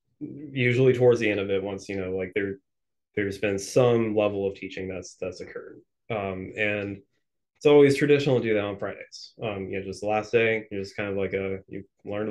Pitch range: 100-115 Hz